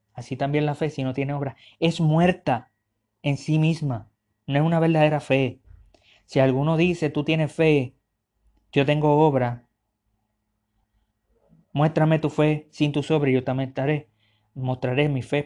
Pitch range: 125-155 Hz